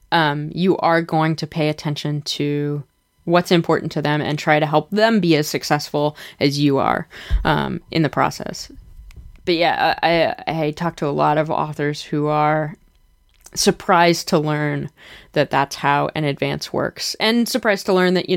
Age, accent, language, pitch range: 20-39, American, English, 150-180 Hz